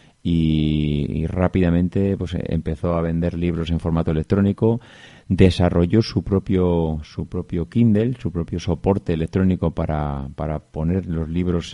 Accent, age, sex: Spanish, 30-49, male